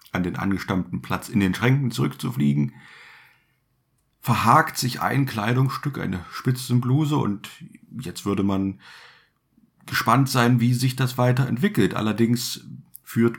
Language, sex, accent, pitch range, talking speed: German, male, German, 95-125 Hz, 115 wpm